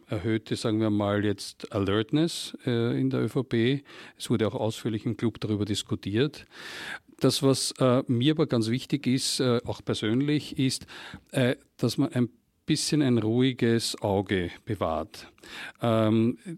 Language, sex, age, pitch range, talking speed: German, male, 50-69, 110-135 Hz, 145 wpm